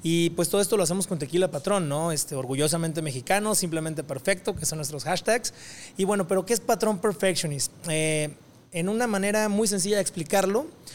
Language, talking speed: Spanish, 180 wpm